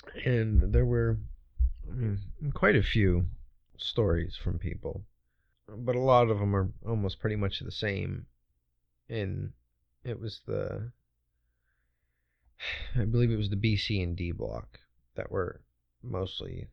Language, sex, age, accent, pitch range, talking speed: English, male, 30-49, American, 85-105 Hz, 130 wpm